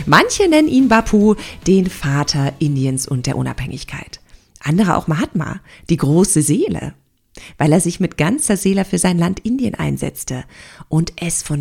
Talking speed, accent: 155 wpm, German